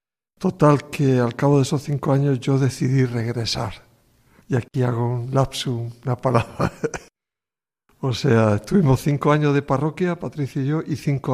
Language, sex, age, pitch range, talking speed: Spanish, male, 60-79, 115-140 Hz, 160 wpm